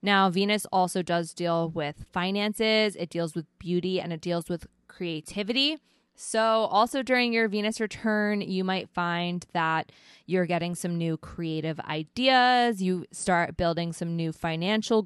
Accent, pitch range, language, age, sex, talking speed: American, 160-200 Hz, English, 20-39, female, 150 wpm